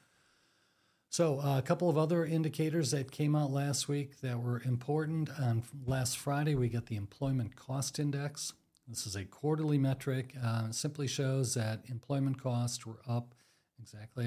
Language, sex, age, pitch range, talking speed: English, male, 50-69, 110-140 Hz, 165 wpm